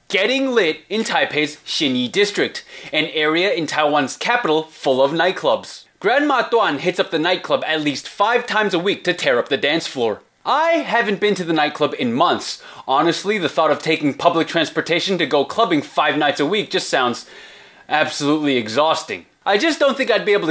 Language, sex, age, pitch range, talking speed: English, male, 20-39, 145-230 Hz, 190 wpm